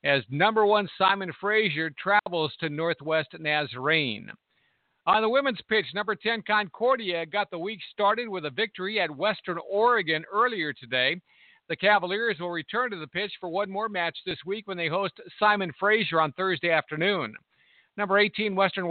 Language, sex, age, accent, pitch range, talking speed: English, male, 50-69, American, 165-205 Hz, 165 wpm